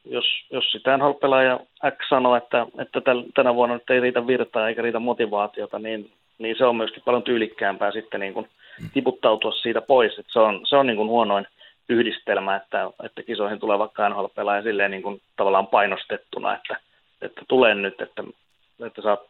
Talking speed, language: 175 wpm, Finnish